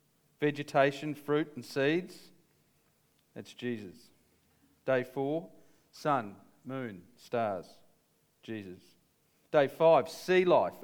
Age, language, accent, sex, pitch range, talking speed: 40-59, English, Australian, male, 120-160 Hz, 90 wpm